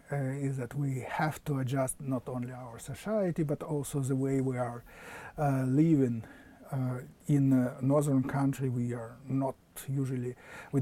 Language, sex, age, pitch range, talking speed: English, male, 50-69, 130-150 Hz, 160 wpm